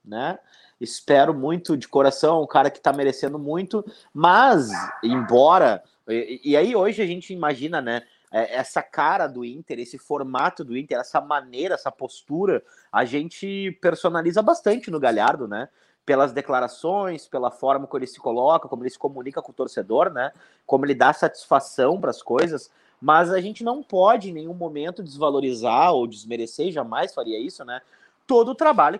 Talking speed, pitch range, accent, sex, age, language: 170 wpm, 135-195 Hz, Brazilian, male, 30-49, Portuguese